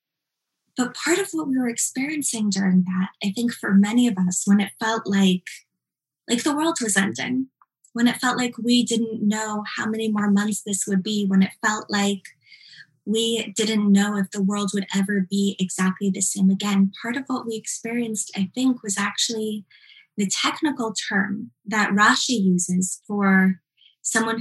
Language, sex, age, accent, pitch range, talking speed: English, female, 20-39, American, 190-225 Hz, 175 wpm